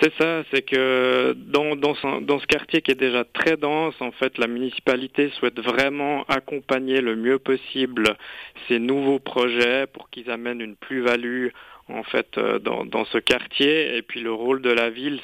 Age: 50-69